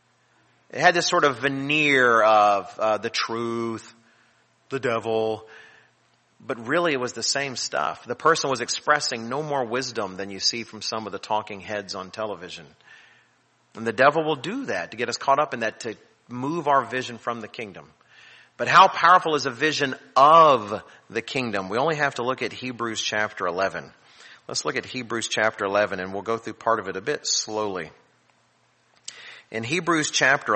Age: 40-59